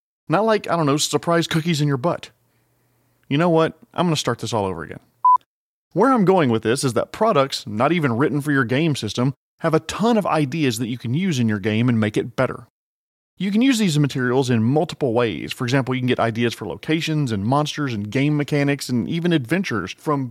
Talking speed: 230 wpm